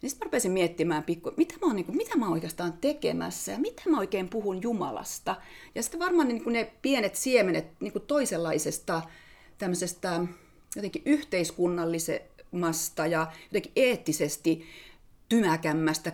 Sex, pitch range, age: female, 165-240 Hz, 30-49